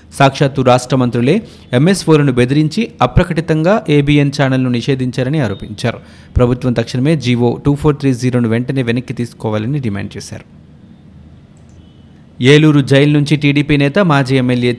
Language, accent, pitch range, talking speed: Telugu, native, 120-150 Hz, 130 wpm